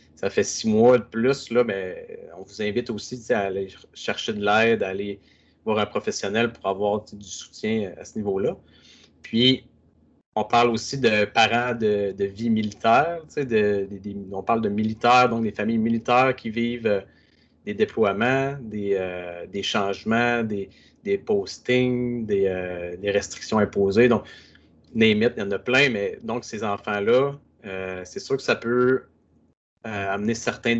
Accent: Canadian